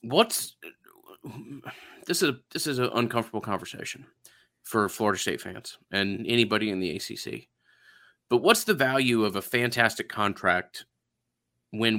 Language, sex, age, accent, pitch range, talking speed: English, male, 30-49, American, 100-125 Hz, 135 wpm